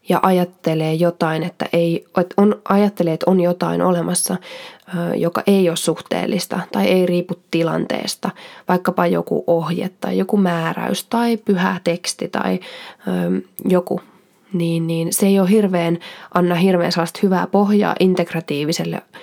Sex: female